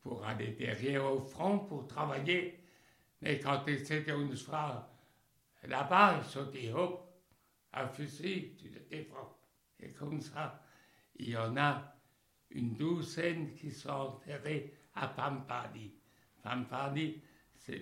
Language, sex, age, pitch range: French, male, 60-79, 130-165 Hz